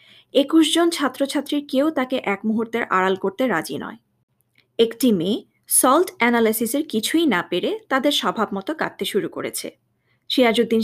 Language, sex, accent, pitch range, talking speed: Bengali, female, native, 210-290 Hz, 135 wpm